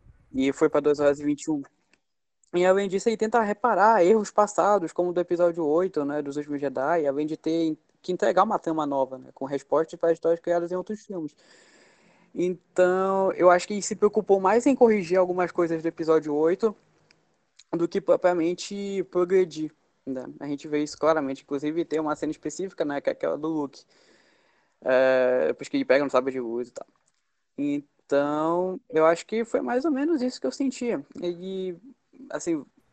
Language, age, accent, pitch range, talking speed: Portuguese, 20-39, Brazilian, 150-195 Hz, 185 wpm